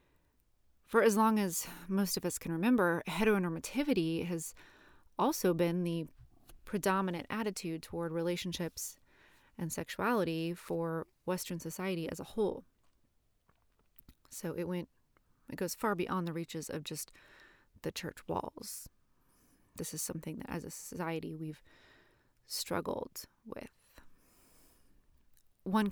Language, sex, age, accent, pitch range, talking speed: English, female, 30-49, American, 165-195 Hz, 120 wpm